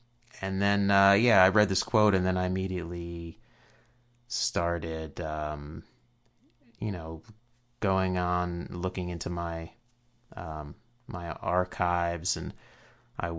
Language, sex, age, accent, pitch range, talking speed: English, male, 30-49, American, 85-105 Hz, 115 wpm